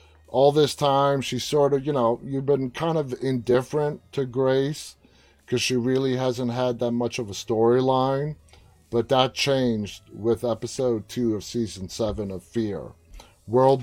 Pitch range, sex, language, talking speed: 110-130 Hz, male, English, 160 wpm